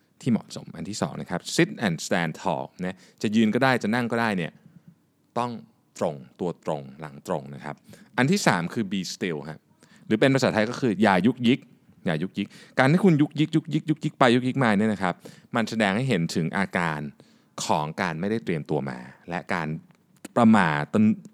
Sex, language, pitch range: male, Thai, 100-150 Hz